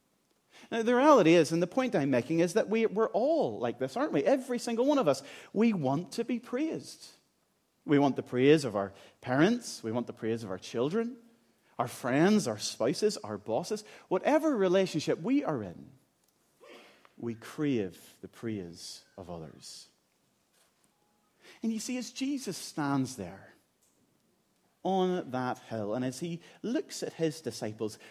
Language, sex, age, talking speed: English, male, 40-59, 160 wpm